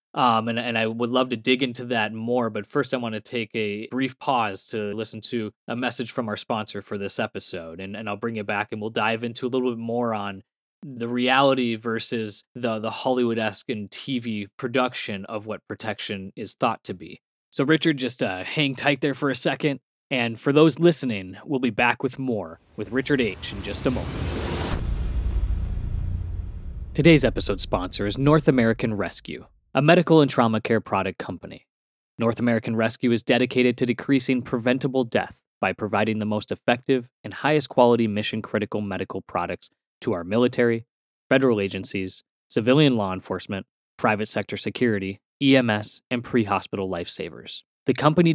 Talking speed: 175 wpm